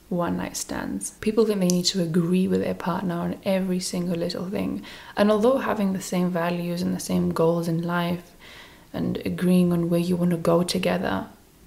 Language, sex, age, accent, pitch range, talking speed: English, female, 20-39, British, 180-205 Hz, 190 wpm